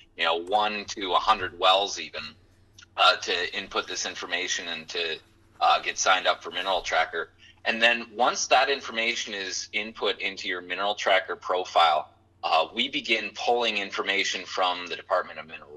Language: English